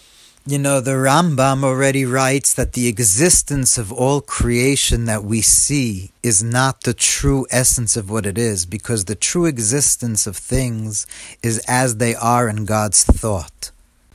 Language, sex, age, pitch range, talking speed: English, male, 40-59, 110-135 Hz, 155 wpm